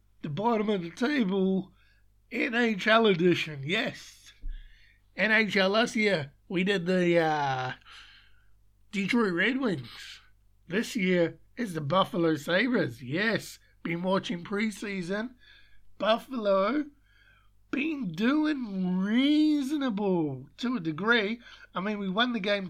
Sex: male